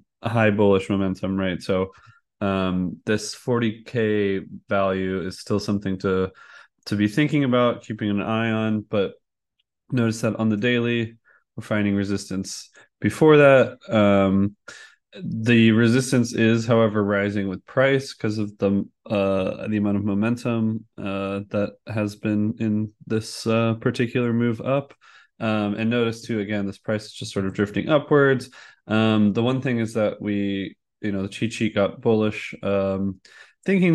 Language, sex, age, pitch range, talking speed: English, male, 20-39, 100-115 Hz, 155 wpm